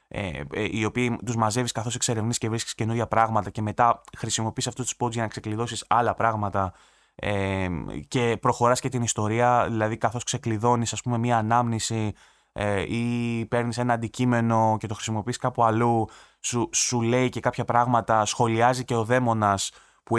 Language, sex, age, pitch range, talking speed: Greek, male, 20-39, 105-125 Hz, 155 wpm